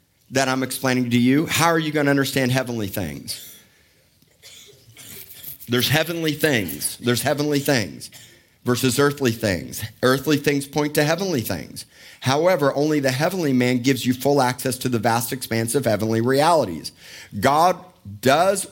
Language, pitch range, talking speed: English, 115-150 Hz, 145 wpm